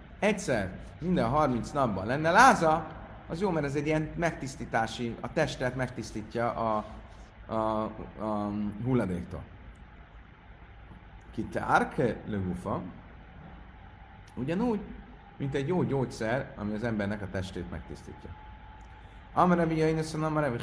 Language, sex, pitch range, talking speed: Hungarian, male, 90-135 Hz, 110 wpm